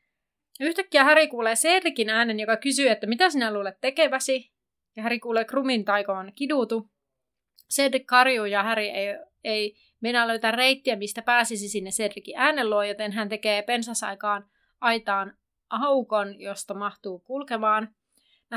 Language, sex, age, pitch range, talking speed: Finnish, female, 30-49, 205-245 Hz, 140 wpm